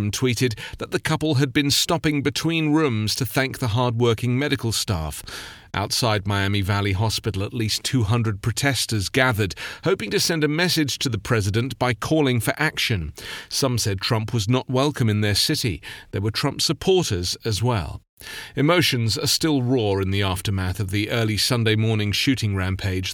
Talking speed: 170 wpm